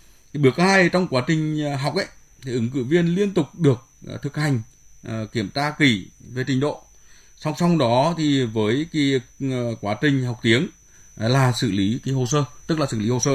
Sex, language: male, Vietnamese